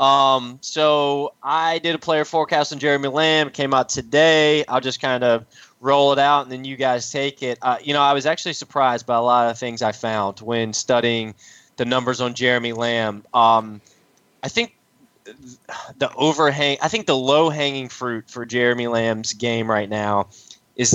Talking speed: 185 wpm